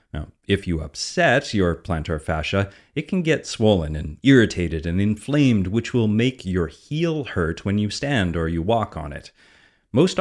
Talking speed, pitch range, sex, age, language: 175 wpm, 90-120 Hz, male, 30-49, English